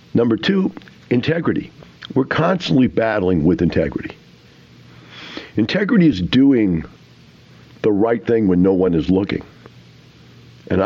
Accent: American